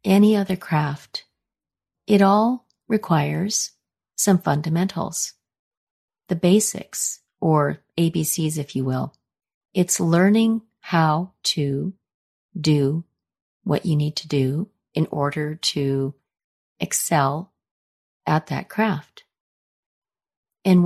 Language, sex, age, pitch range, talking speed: English, female, 40-59, 145-185 Hz, 95 wpm